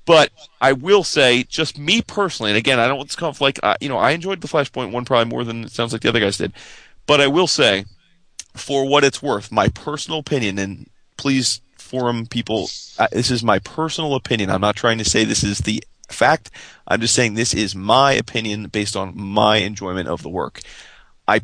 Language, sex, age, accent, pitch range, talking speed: English, male, 30-49, American, 105-130 Hz, 220 wpm